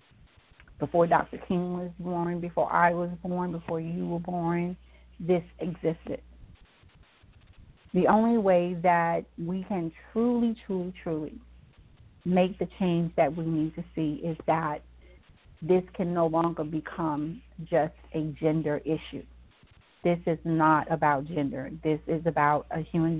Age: 40-59